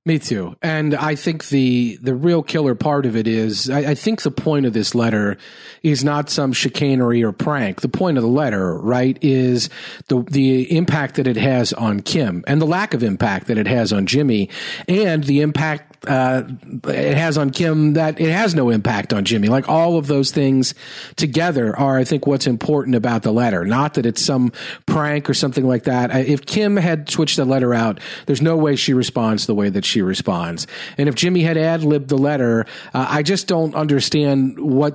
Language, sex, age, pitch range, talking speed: English, male, 40-59, 125-150 Hz, 210 wpm